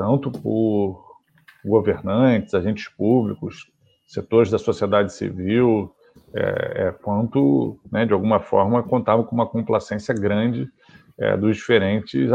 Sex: male